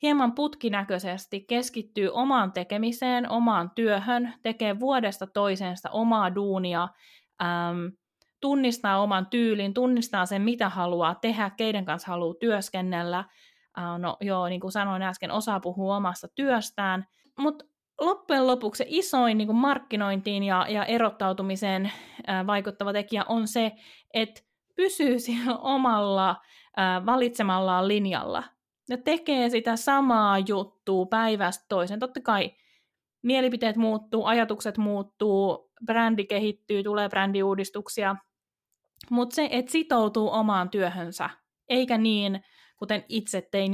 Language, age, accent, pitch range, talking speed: Finnish, 20-39, native, 195-250 Hz, 120 wpm